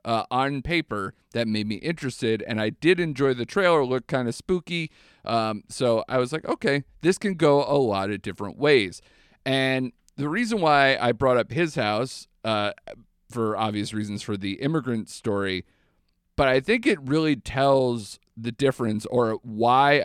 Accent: American